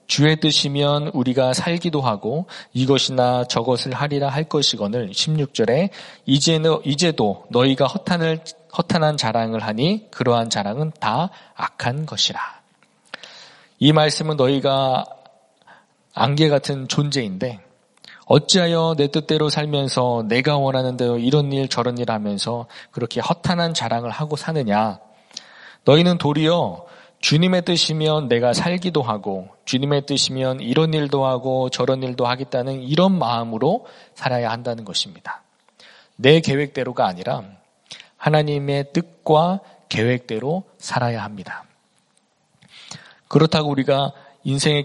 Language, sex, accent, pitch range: Korean, male, native, 125-155 Hz